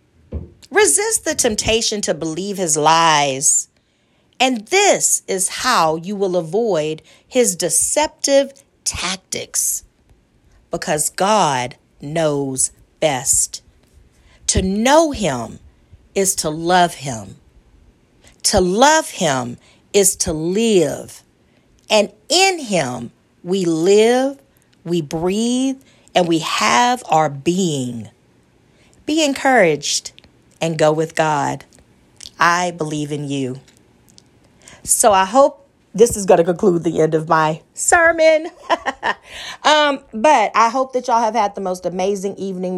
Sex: female